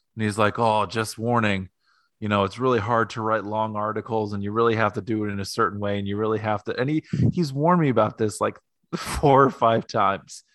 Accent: American